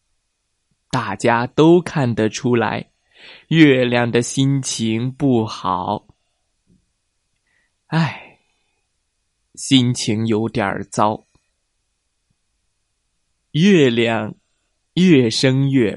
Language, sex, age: Chinese, male, 20-39